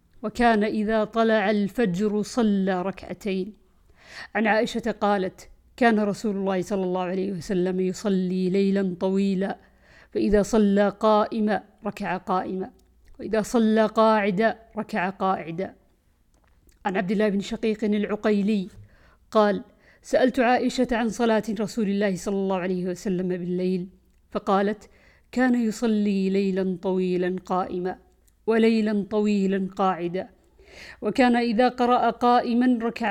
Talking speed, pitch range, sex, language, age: 125 wpm, 195-230 Hz, female, Arabic, 50-69